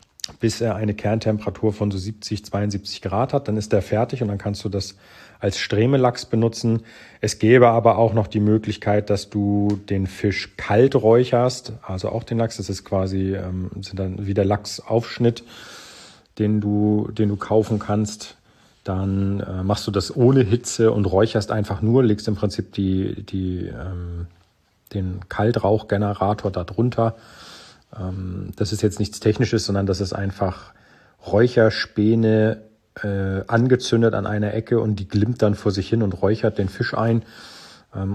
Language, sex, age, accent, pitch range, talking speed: German, male, 40-59, German, 95-110 Hz, 160 wpm